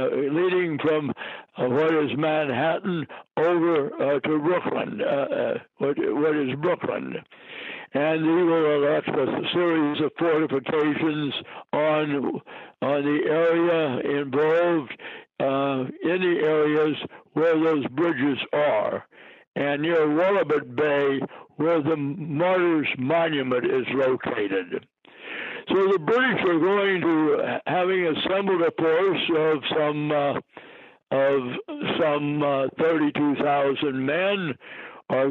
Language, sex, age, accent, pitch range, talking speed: English, male, 60-79, American, 145-175 Hz, 110 wpm